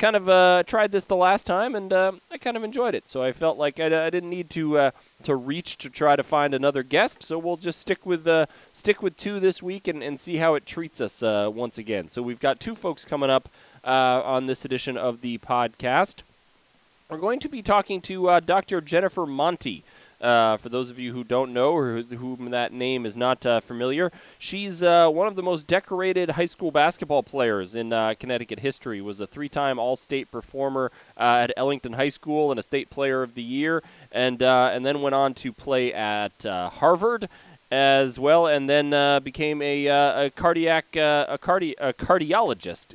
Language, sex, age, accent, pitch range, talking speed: English, male, 20-39, American, 125-175 Hz, 215 wpm